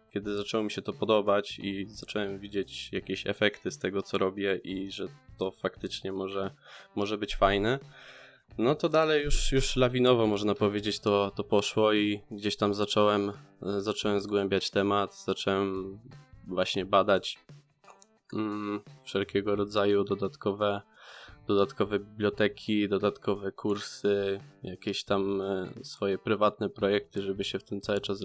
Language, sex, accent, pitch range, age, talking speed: Polish, male, native, 100-110 Hz, 20-39, 130 wpm